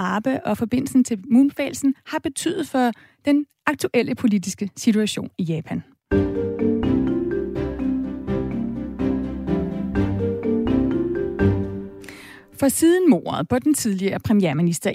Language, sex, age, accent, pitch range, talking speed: Danish, female, 30-49, native, 200-275 Hz, 85 wpm